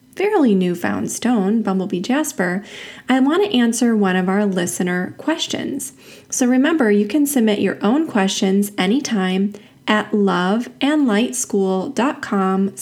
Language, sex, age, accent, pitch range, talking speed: English, female, 20-39, American, 195-255 Hz, 115 wpm